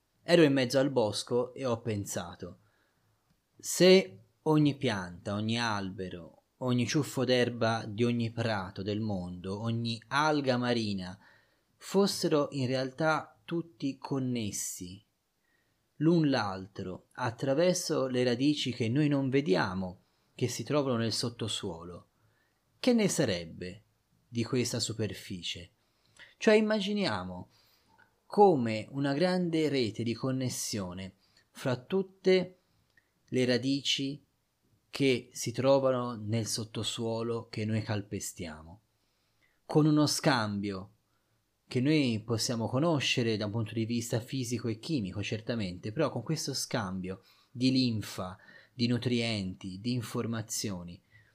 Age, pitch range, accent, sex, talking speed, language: 30-49, 105-135 Hz, native, male, 110 wpm, Italian